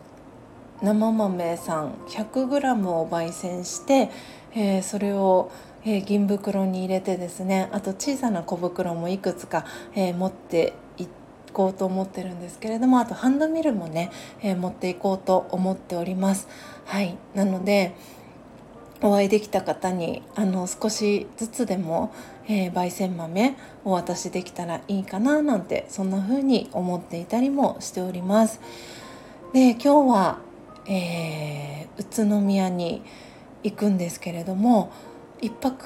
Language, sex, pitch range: Japanese, female, 185-230 Hz